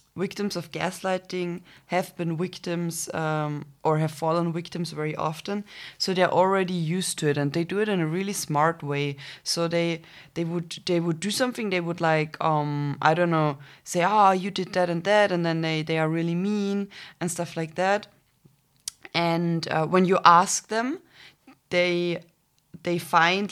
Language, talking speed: English, 185 wpm